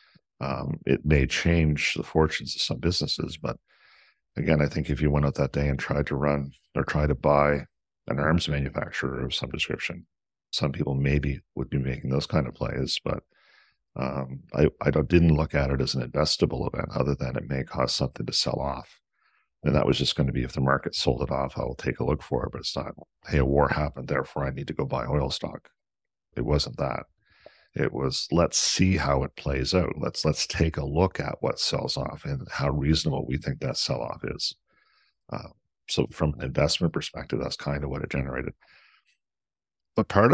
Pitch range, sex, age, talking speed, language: 70-80 Hz, male, 50-69, 210 wpm, English